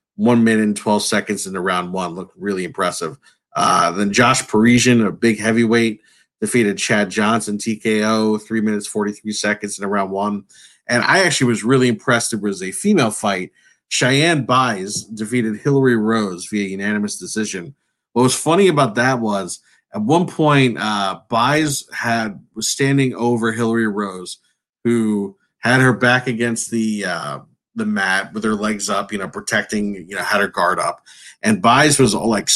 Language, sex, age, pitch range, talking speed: English, male, 40-59, 105-130 Hz, 170 wpm